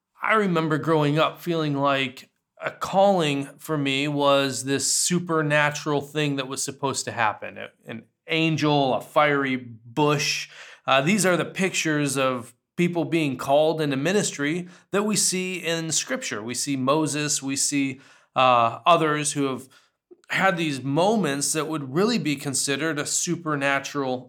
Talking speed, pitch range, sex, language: 145 wpm, 135-165 Hz, male, Polish